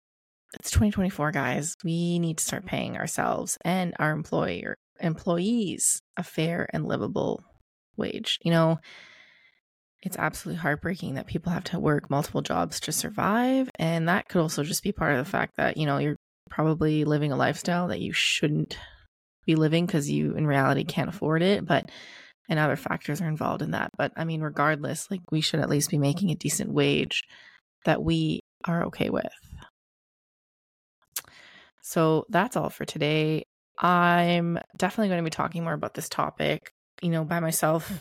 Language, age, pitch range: English, 20-39, 155-175 Hz